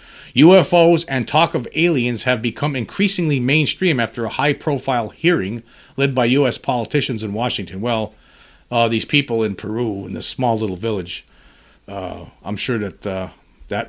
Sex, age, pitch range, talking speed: male, 40-59, 100-135 Hz, 155 wpm